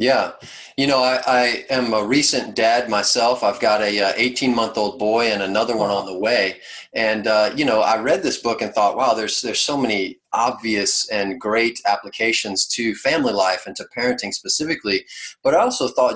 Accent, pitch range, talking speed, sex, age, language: American, 105-130 Hz, 195 wpm, male, 30-49, English